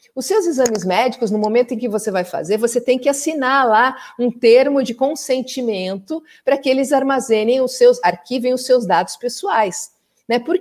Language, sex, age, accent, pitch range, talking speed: Portuguese, female, 50-69, Brazilian, 210-275 Hz, 185 wpm